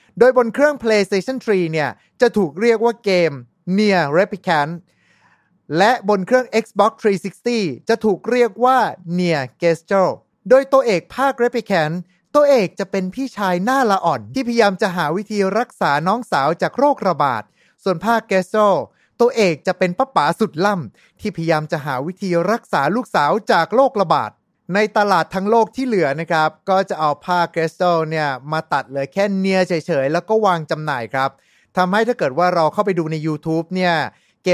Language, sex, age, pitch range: Thai, male, 30-49, 160-215 Hz